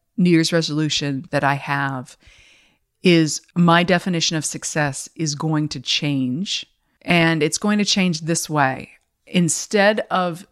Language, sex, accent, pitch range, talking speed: English, female, American, 145-180 Hz, 135 wpm